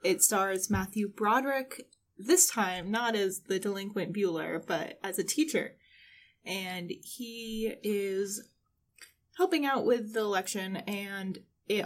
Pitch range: 190-240 Hz